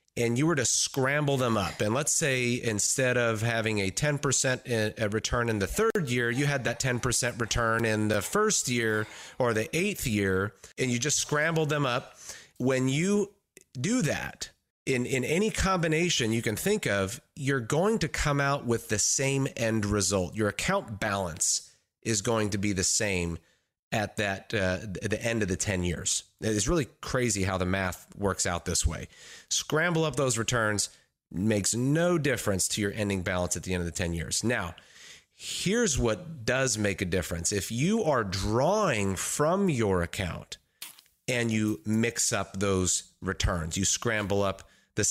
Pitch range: 95-135 Hz